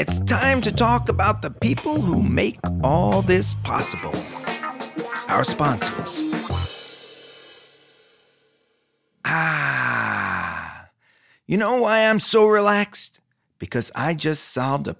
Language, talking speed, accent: English, 105 wpm, American